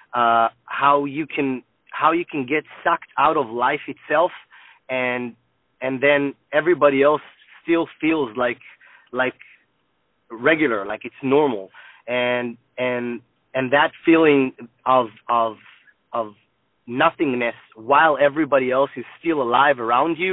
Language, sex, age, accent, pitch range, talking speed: English, male, 30-49, American, 120-145 Hz, 125 wpm